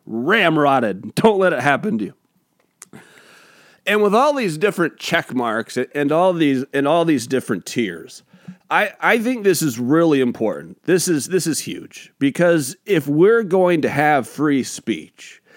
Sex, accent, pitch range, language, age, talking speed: male, American, 130-185 Hz, English, 40-59, 165 wpm